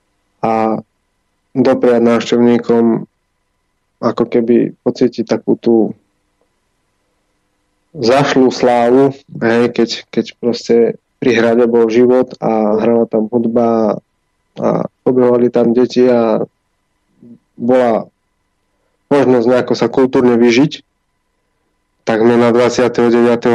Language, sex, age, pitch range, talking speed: Slovak, male, 20-39, 110-125 Hz, 90 wpm